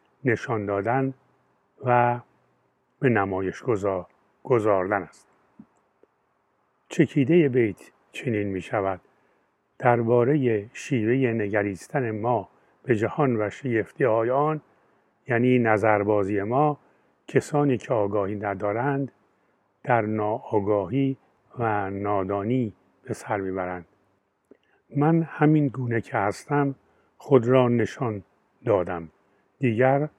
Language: Persian